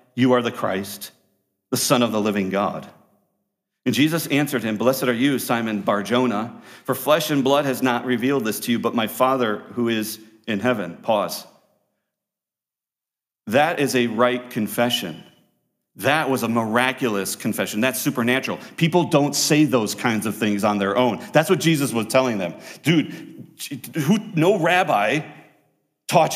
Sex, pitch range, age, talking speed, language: male, 115-150 Hz, 40-59, 155 wpm, English